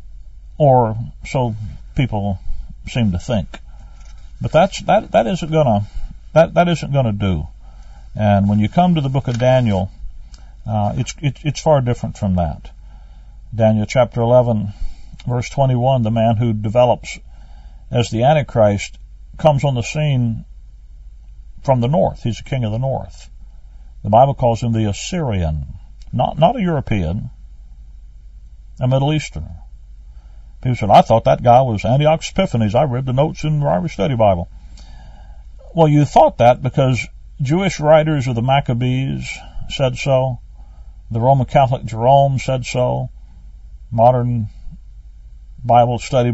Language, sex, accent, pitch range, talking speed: English, male, American, 90-135 Hz, 140 wpm